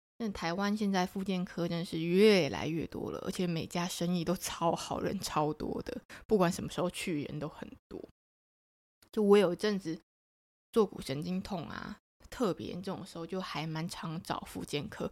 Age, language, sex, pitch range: 20-39, Chinese, female, 165-215 Hz